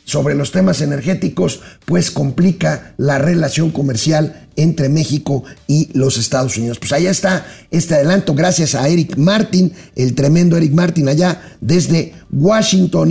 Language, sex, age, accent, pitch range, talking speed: Spanish, male, 50-69, Mexican, 155-205 Hz, 140 wpm